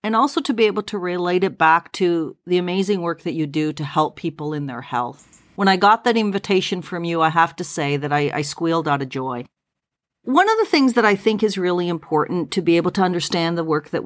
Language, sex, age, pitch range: English, female, 40-59, 170-220 Hz